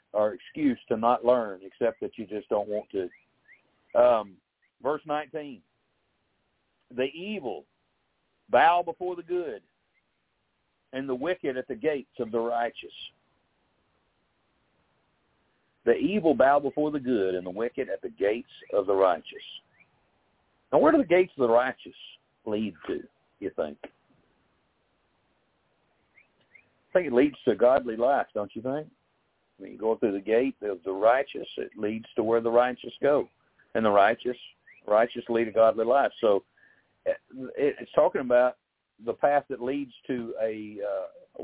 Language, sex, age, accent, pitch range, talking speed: English, male, 60-79, American, 115-165 Hz, 150 wpm